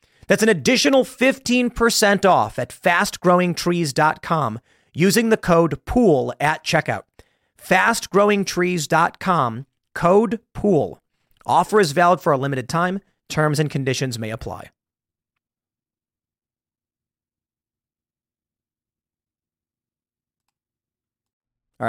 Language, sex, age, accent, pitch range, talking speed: English, male, 40-59, American, 135-200 Hz, 80 wpm